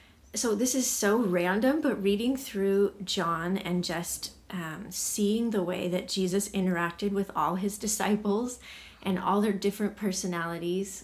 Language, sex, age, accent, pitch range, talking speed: English, female, 20-39, American, 175-215 Hz, 145 wpm